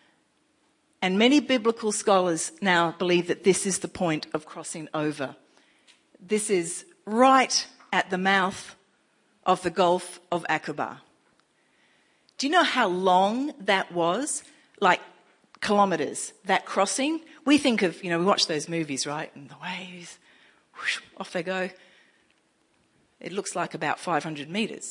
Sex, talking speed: female, 140 wpm